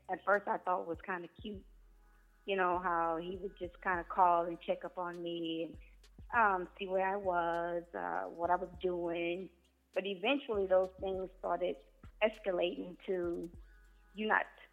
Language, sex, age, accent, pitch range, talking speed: English, female, 20-39, American, 170-200 Hz, 175 wpm